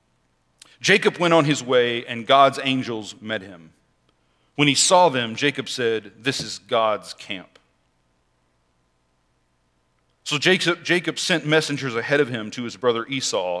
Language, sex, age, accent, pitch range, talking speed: English, male, 40-59, American, 110-155 Hz, 135 wpm